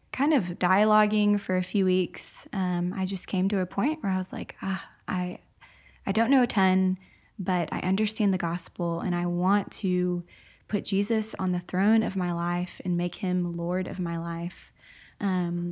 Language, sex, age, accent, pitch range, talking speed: English, female, 20-39, American, 175-200 Hz, 190 wpm